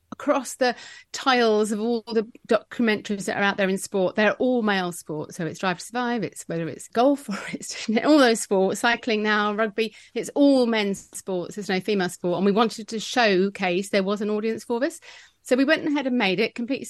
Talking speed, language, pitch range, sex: 215 wpm, English, 190-245 Hz, female